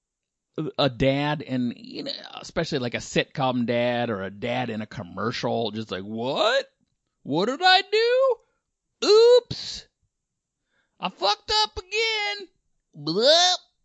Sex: male